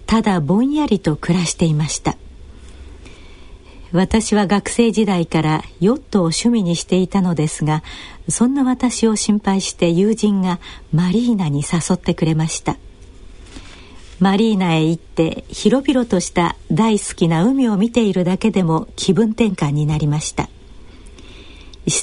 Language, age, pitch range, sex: Japanese, 60-79, 155-215 Hz, female